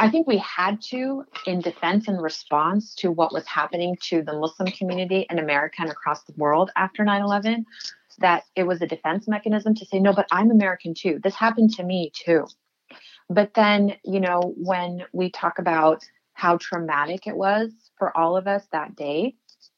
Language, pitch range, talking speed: English, 160-205 Hz, 185 wpm